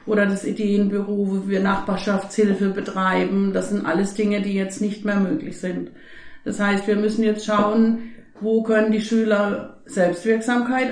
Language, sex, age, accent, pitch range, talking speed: German, female, 50-69, German, 205-240 Hz, 155 wpm